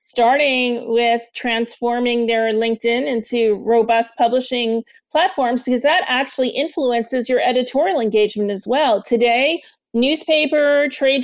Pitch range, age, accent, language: 220-255 Hz, 40-59, American, English